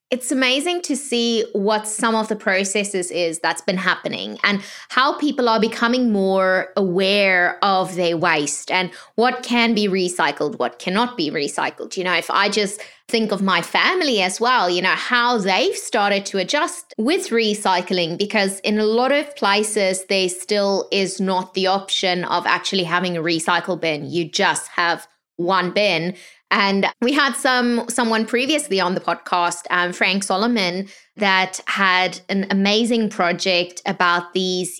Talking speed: 160 wpm